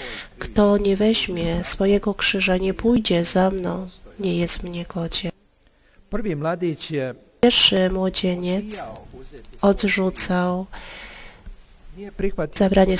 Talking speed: 80 wpm